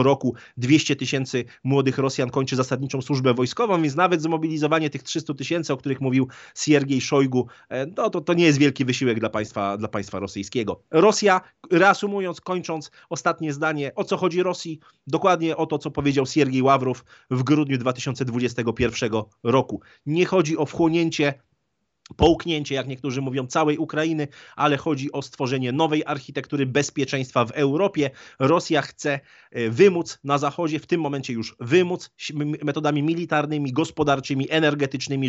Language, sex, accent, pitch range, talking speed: Polish, male, native, 130-165 Hz, 145 wpm